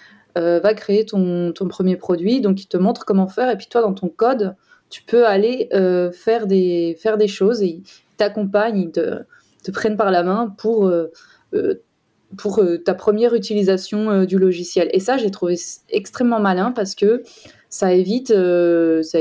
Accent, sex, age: French, female, 20-39